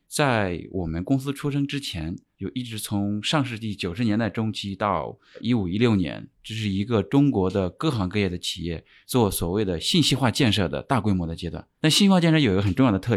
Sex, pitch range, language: male, 95-140 Hz, Chinese